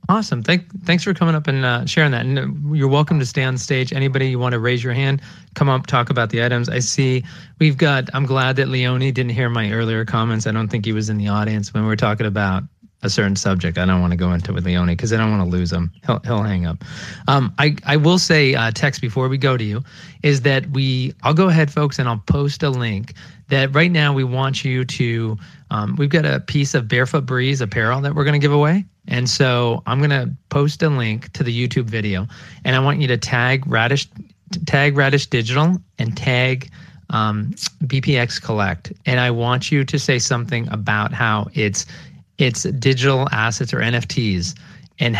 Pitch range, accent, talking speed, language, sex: 115-145 Hz, American, 225 wpm, English, male